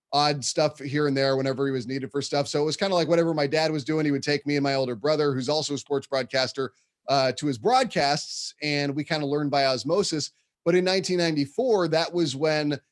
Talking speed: 240 wpm